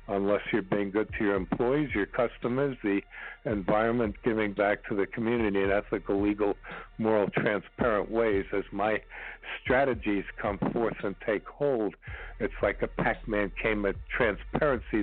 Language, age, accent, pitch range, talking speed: English, 60-79, American, 105-125 Hz, 150 wpm